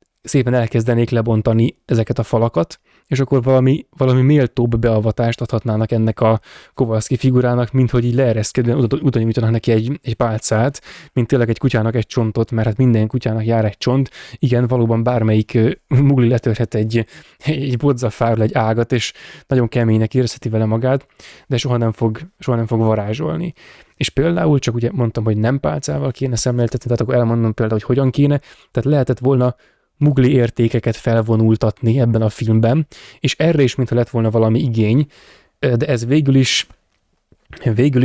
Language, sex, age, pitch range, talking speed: Hungarian, male, 10-29, 115-130 Hz, 160 wpm